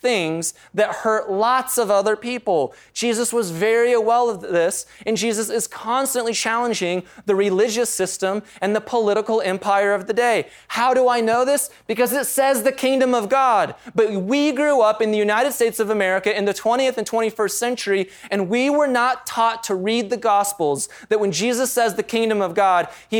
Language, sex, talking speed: English, male, 195 wpm